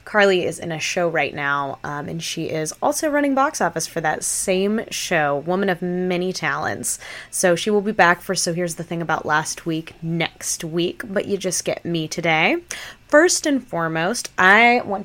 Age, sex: 20-39, female